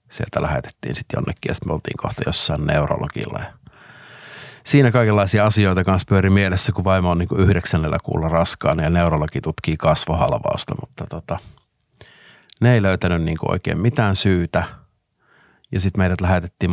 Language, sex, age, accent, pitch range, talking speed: Finnish, male, 50-69, native, 85-95 Hz, 145 wpm